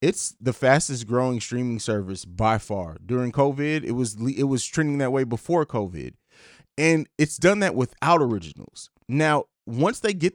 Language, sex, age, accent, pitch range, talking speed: English, male, 20-39, American, 130-170 Hz, 170 wpm